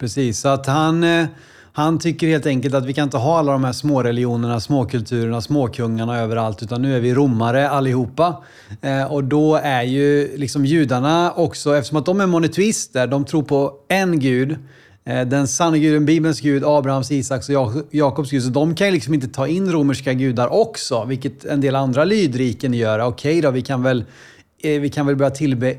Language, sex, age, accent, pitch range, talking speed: Swedish, male, 30-49, native, 125-150 Hz, 190 wpm